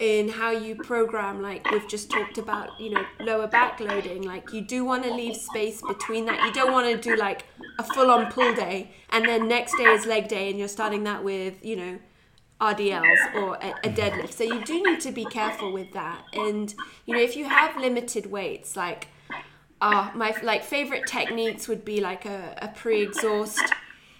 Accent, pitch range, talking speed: British, 200-230 Hz, 200 wpm